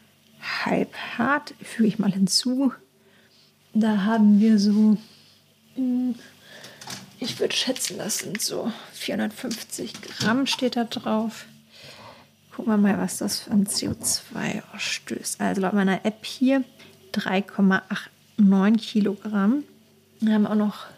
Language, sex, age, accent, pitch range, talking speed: German, female, 40-59, German, 205-235 Hz, 115 wpm